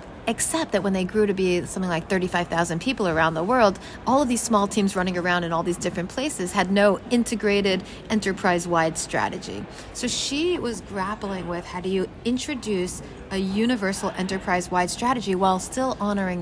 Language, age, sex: English, 40-59, female